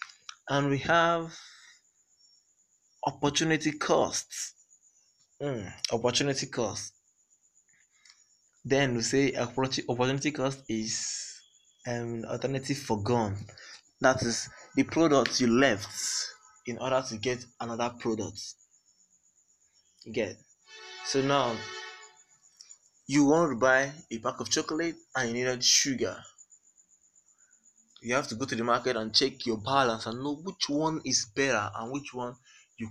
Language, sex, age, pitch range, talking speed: English, male, 20-39, 110-140 Hz, 120 wpm